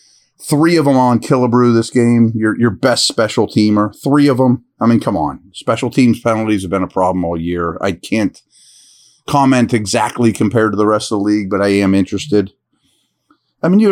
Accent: American